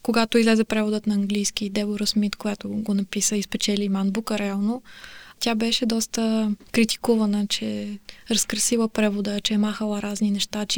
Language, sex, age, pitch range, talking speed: Bulgarian, female, 20-39, 215-230 Hz, 155 wpm